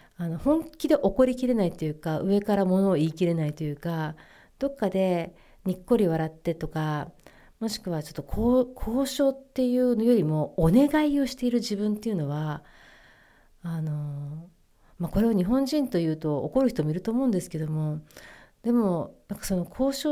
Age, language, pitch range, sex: 40-59, Japanese, 160-230 Hz, female